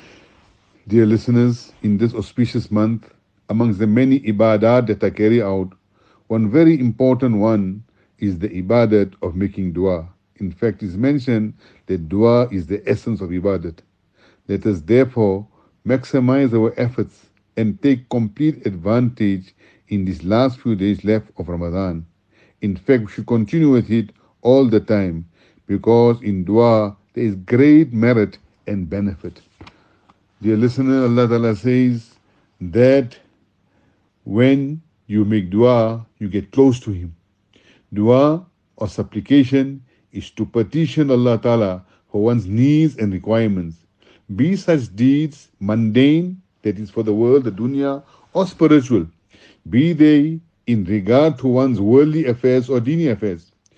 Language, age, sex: English, 60-79, male